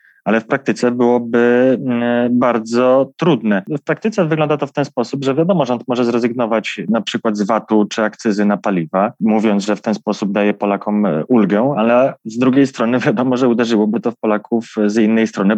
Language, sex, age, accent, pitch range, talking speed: Polish, male, 20-39, native, 110-135 Hz, 180 wpm